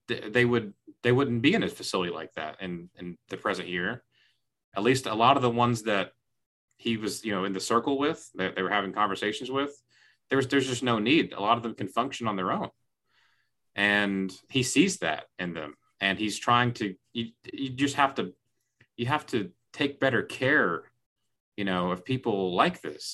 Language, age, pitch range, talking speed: English, 30-49, 100-130 Hz, 210 wpm